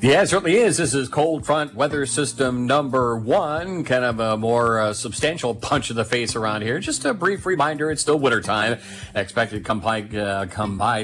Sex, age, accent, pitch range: male, 40-59, American, 105-130 Hz